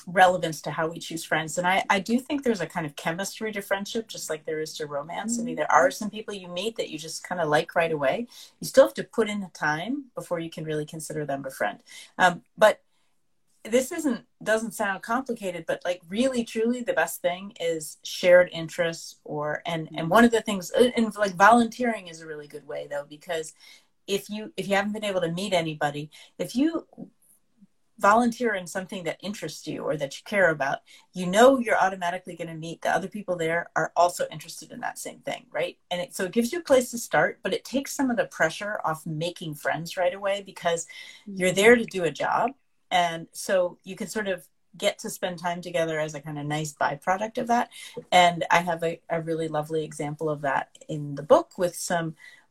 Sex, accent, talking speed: female, American, 220 wpm